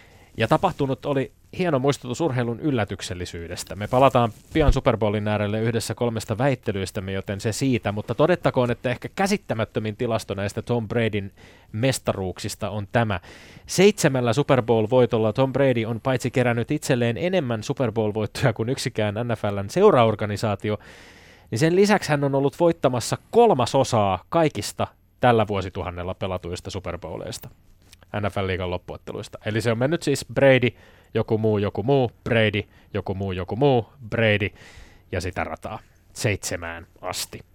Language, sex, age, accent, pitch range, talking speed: Finnish, male, 20-39, native, 105-135 Hz, 135 wpm